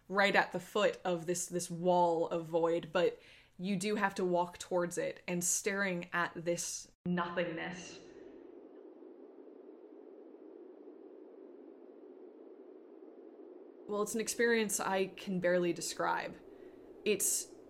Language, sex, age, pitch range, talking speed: English, female, 20-39, 175-280 Hz, 110 wpm